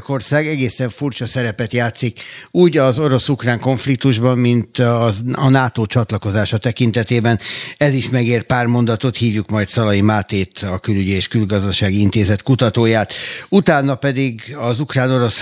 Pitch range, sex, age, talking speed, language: 105-130 Hz, male, 60-79, 130 wpm, Hungarian